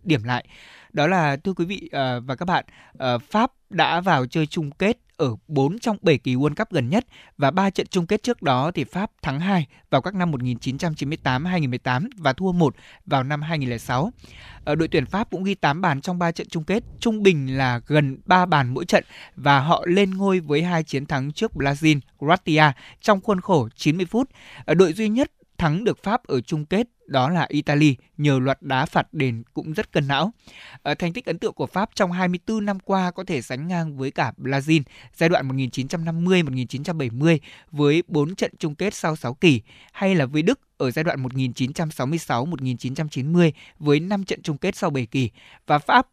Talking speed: 195 wpm